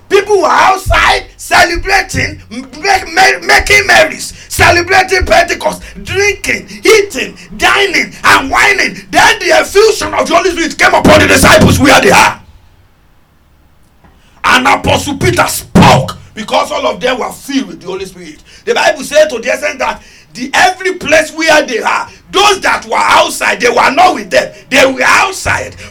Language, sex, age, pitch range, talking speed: English, male, 50-69, 305-400 Hz, 155 wpm